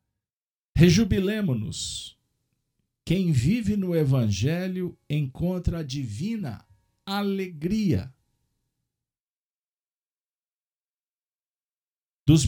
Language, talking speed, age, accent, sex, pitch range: Portuguese, 50 wpm, 50-69, Brazilian, male, 110-165 Hz